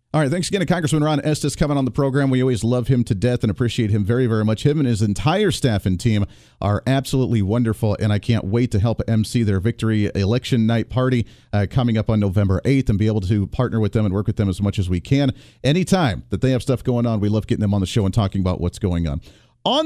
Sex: male